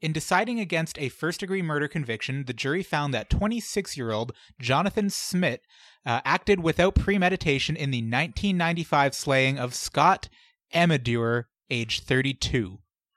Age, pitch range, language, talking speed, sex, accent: 20-39, 120-170 Hz, English, 125 wpm, male, American